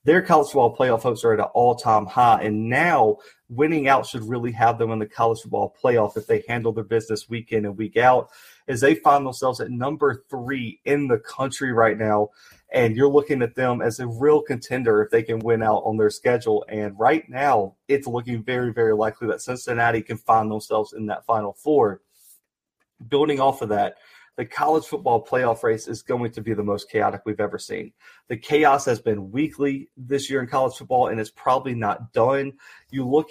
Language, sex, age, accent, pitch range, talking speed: English, male, 30-49, American, 110-140 Hz, 205 wpm